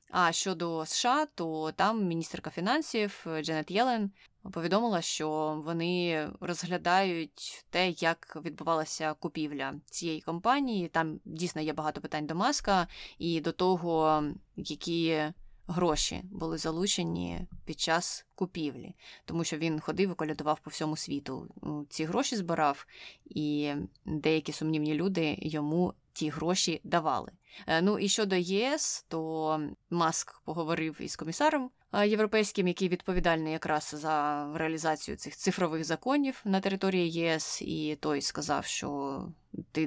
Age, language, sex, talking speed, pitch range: 20-39, Ukrainian, female, 120 wpm, 155-185 Hz